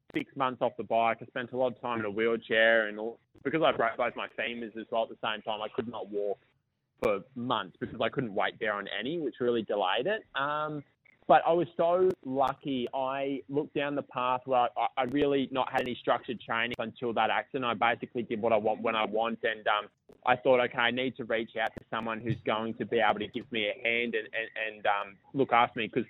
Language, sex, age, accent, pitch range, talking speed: English, male, 20-39, Australian, 115-130 Hz, 245 wpm